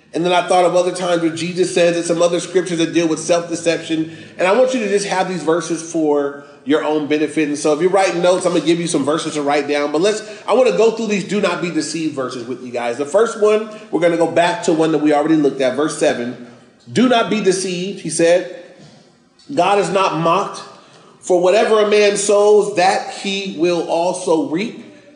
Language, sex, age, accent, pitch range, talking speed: English, male, 30-49, American, 165-210 Hz, 240 wpm